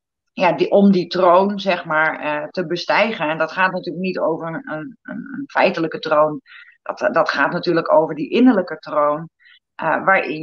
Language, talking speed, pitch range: Dutch, 150 wpm, 160-195 Hz